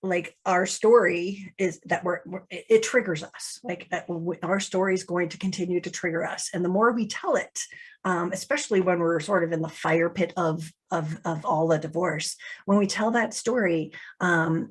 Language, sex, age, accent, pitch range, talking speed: English, female, 40-59, American, 180-235 Hz, 195 wpm